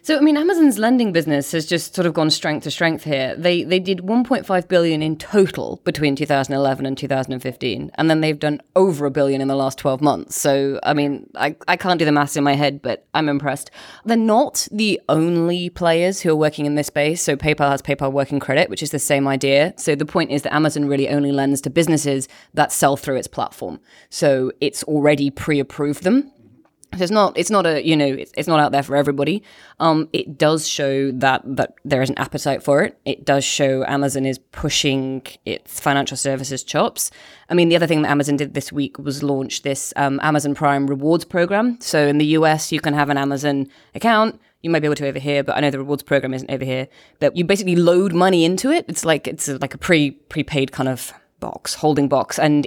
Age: 20-39